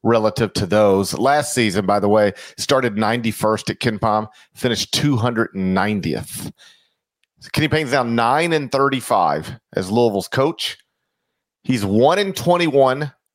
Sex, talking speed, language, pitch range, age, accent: male, 150 wpm, English, 110-150 Hz, 40-59, American